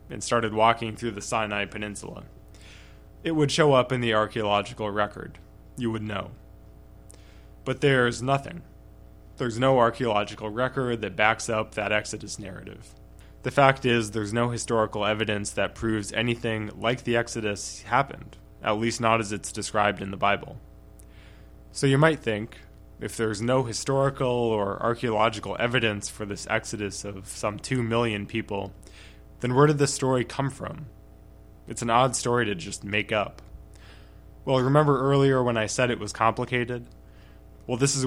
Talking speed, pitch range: 160 wpm, 105-125 Hz